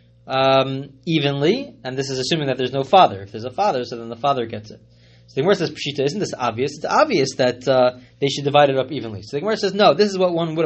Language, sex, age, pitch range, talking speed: English, male, 20-39, 130-205 Hz, 265 wpm